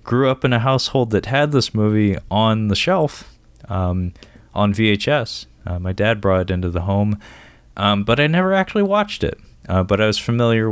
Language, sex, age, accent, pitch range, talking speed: English, male, 20-39, American, 85-105 Hz, 195 wpm